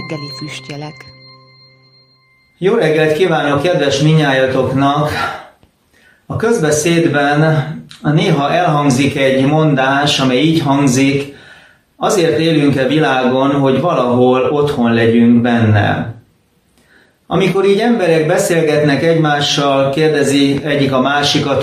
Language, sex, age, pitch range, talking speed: Hungarian, male, 30-49, 130-155 Hz, 85 wpm